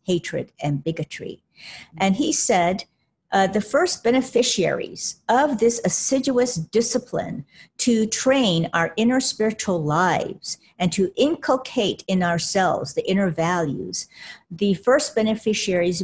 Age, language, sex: 50-69, English, female